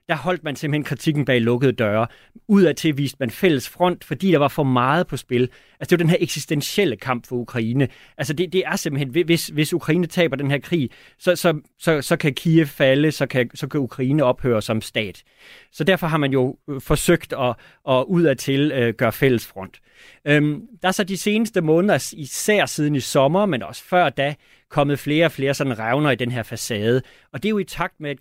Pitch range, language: 130-165 Hz, Danish